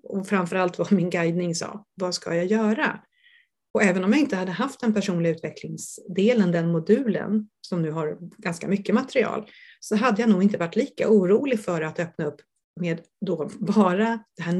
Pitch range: 175-220 Hz